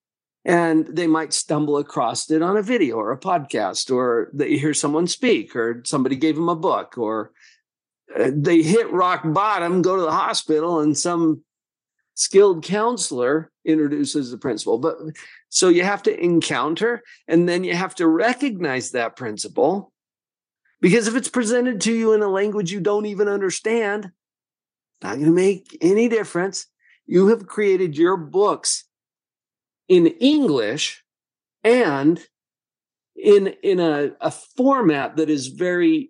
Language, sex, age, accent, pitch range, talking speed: English, male, 50-69, American, 155-215 Hz, 145 wpm